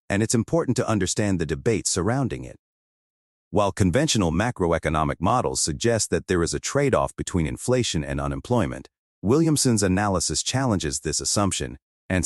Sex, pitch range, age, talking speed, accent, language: male, 80-115 Hz, 40-59, 145 wpm, American, English